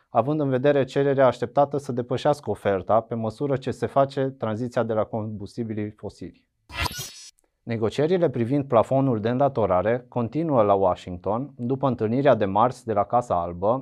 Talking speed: 150 wpm